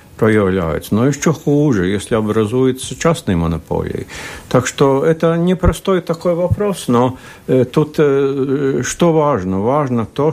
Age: 60-79